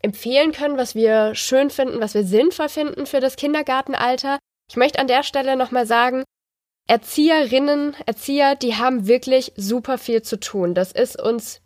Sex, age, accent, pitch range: female, 20-39, German, 220-260 Hz